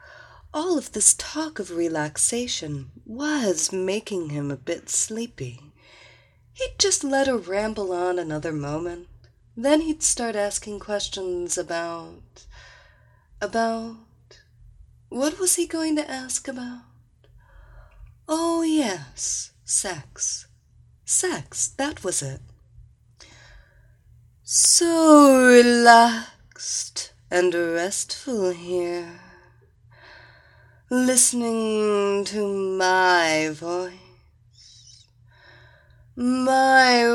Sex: female